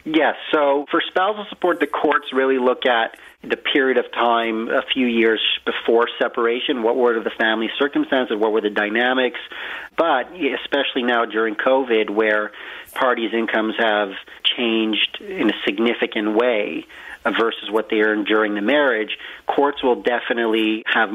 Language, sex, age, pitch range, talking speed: English, male, 40-59, 110-130 Hz, 150 wpm